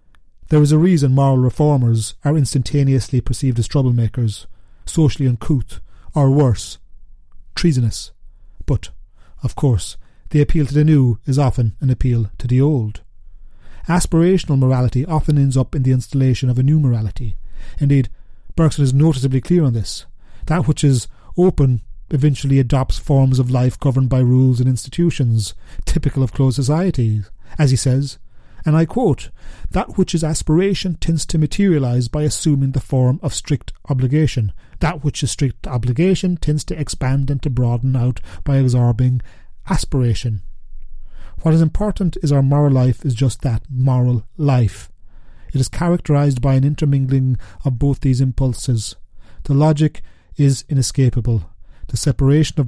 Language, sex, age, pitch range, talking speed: English, male, 30-49, 115-145 Hz, 150 wpm